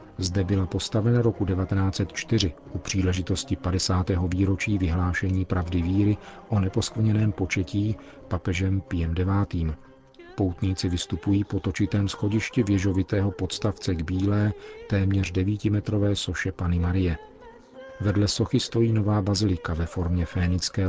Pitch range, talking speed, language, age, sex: 90-105 Hz, 115 wpm, Czech, 40-59, male